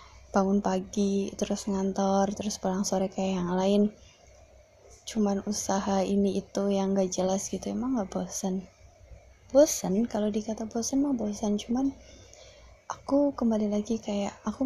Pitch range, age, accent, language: 205-235 Hz, 20-39, native, Indonesian